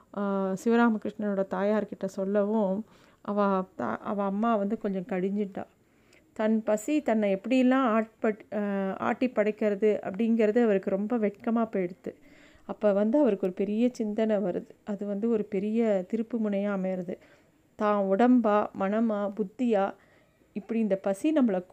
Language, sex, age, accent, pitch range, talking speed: Tamil, female, 30-49, native, 195-230 Hz, 120 wpm